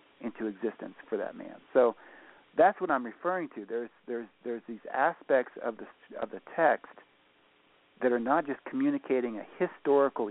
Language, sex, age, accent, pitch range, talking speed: English, male, 50-69, American, 105-135 Hz, 165 wpm